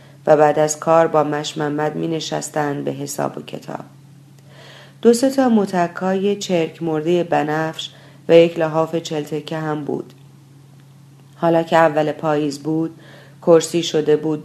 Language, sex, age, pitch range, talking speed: Persian, female, 40-59, 140-165 Hz, 135 wpm